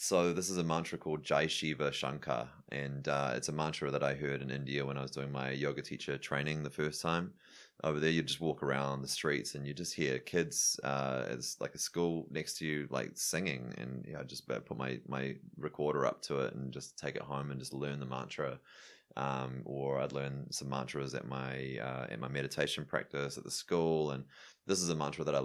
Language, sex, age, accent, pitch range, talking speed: English, male, 20-39, Australian, 70-75 Hz, 230 wpm